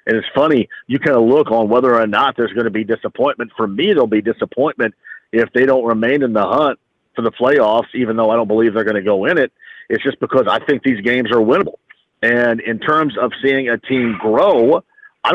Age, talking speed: 50-69, 235 wpm